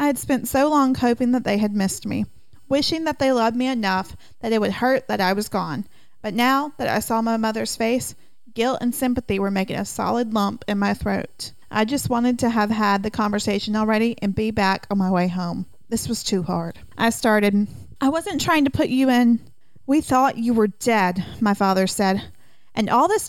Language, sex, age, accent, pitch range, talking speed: English, female, 40-59, American, 205-260 Hz, 215 wpm